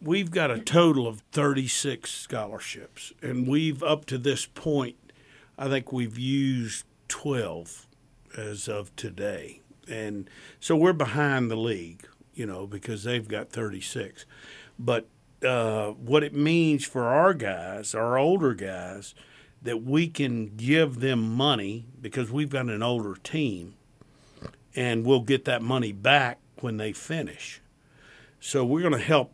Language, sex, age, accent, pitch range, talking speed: English, male, 50-69, American, 115-145 Hz, 140 wpm